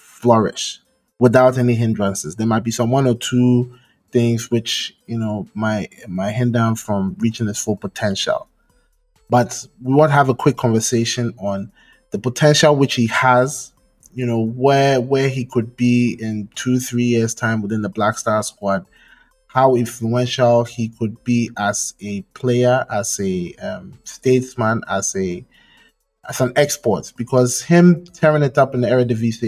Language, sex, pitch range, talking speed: English, male, 110-130 Hz, 160 wpm